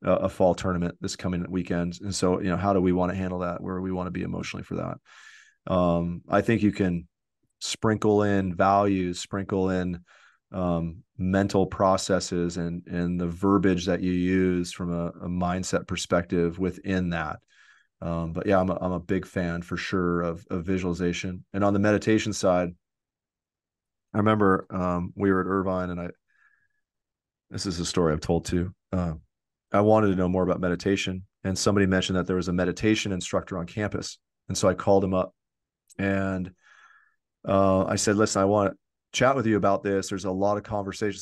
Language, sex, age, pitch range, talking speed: English, male, 30-49, 90-100 Hz, 190 wpm